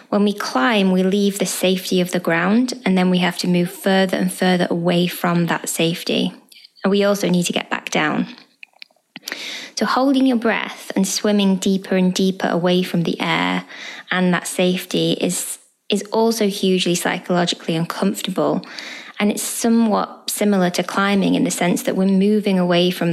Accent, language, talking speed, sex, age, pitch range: British, English, 175 wpm, female, 20-39, 180-215 Hz